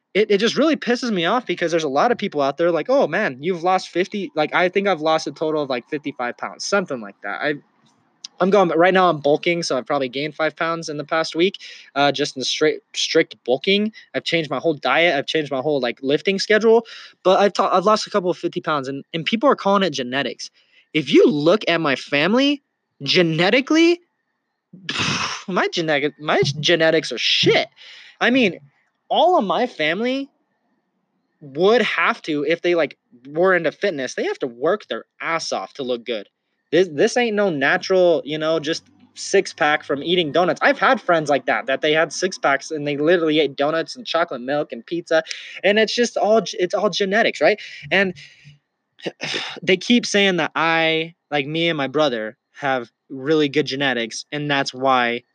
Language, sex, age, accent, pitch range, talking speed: English, male, 20-39, American, 150-200 Hz, 205 wpm